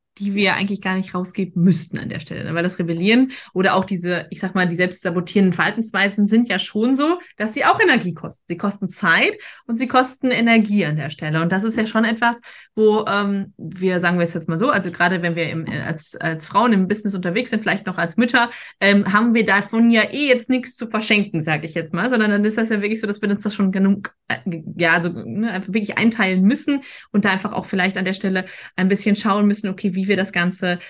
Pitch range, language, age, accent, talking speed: 185-230 Hz, German, 20-39, German, 245 wpm